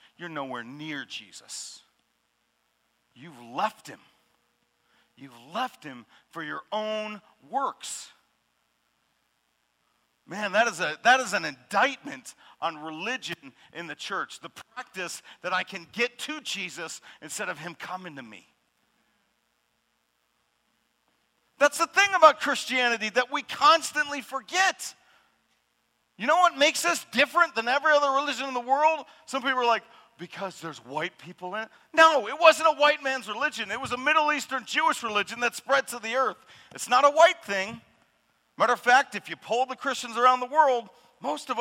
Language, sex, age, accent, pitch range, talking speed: English, male, 50-69, American, 170-270 Hz, 155 wpm